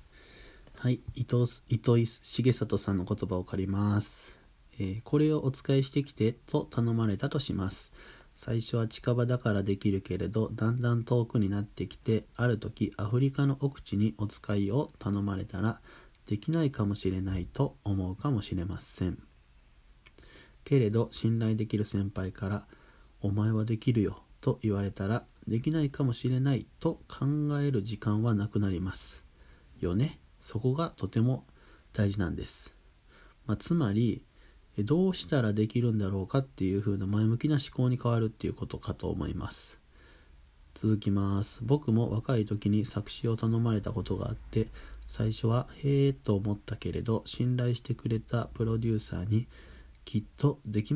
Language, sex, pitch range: Japanese, male, 100-120 Hz